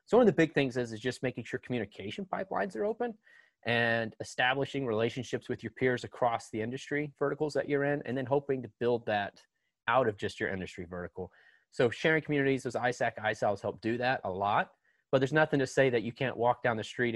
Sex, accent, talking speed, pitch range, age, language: male, American, 220 wpm, 105-130 Hz, 30-49, English